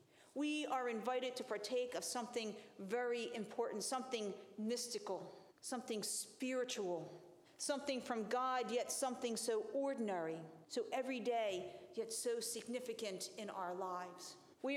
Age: 40-59